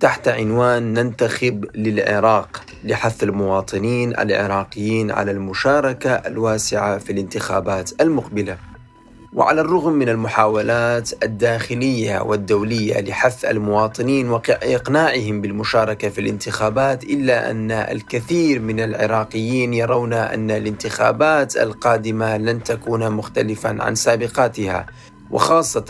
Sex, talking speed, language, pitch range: male, 95 wpm, Arabic, 110-125 Hz